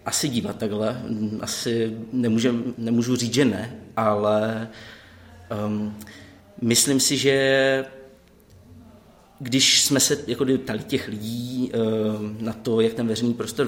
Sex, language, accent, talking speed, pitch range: male, Czech, native, 125 wpm, 105-120 Hz